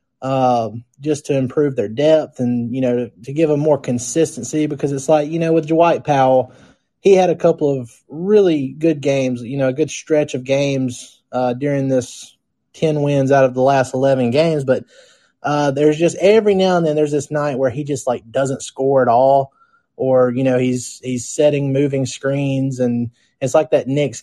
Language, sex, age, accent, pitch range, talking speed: English, male, 20-39, American, 125-155 Hz, 205 wpm